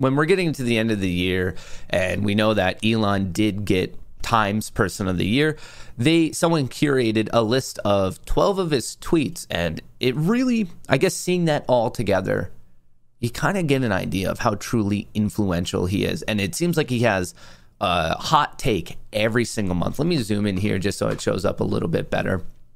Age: 30-49